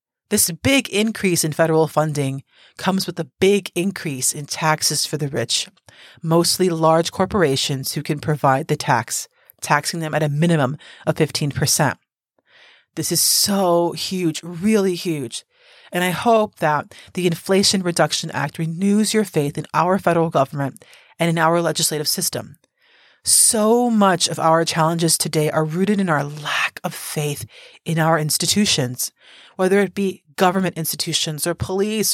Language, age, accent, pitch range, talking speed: English, 30-49, American, 155-190 Hz, 150 wpm